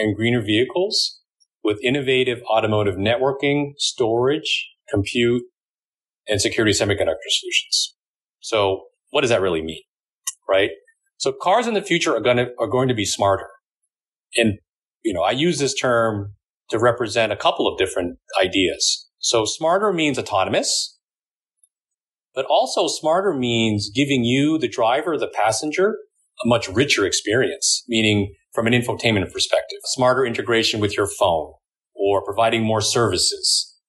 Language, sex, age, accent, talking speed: English, male, 30-49, American, 135 wpm